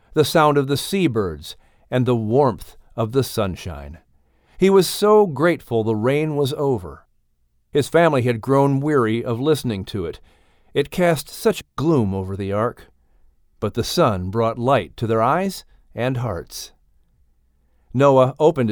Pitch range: 110-185 Hz